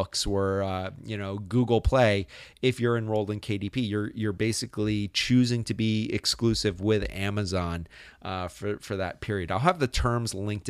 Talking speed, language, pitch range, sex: 170 wpm, English, 100-135 Hz, male